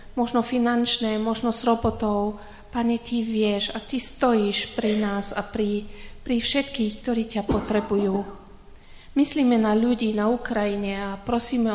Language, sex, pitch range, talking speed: Slovak, female, 200-235 Hz, 140 wpm